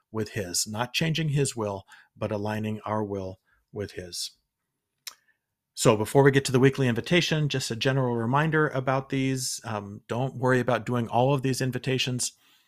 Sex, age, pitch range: male, 40-59, 115-135 Hz